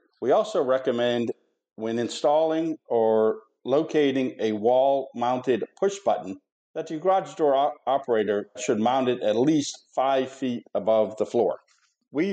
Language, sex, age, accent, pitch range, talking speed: English, male, 50-69, American, 100-130 Hz, 130 wpm